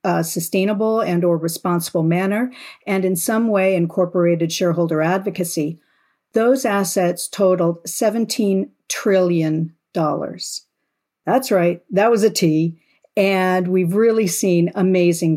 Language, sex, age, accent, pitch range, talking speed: English, female, 50-69, American, 170-215 Hz, 110 wpm